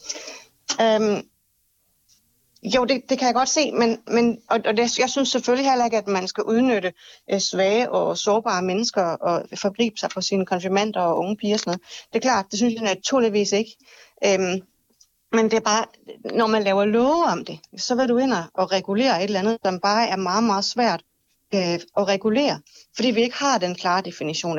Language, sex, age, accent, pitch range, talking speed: Danish, female, 30-49, native, 185-235 Hz, 205 wpm